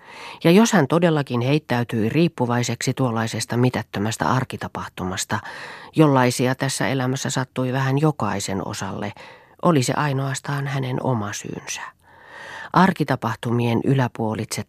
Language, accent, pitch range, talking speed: Finnish, native, 120-155 Hz, 100 wpm